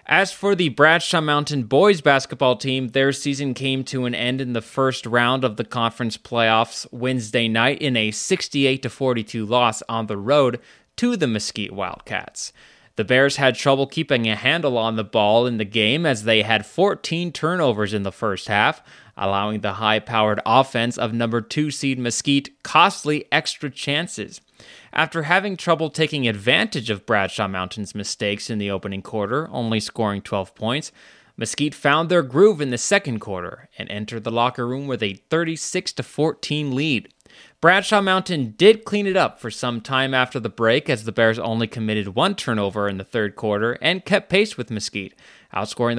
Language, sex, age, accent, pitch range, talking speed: English, male, 20-39, American, 110-150 Hz, 170 wpm